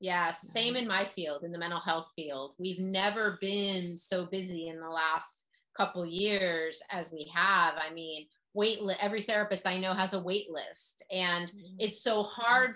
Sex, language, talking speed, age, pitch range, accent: female, English, 180 wpm, 30-49, 170-200 Hz, American